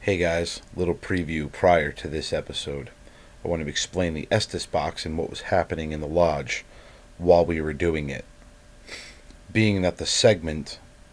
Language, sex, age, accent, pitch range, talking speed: English, male, 30-49, American, 80-95 Hz, 165 wpm